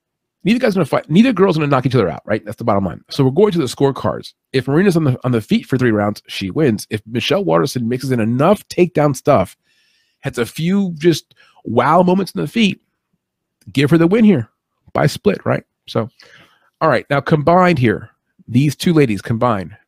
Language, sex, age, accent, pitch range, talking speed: English, male, 40-59, American, 115-150 Hz, 215 wpm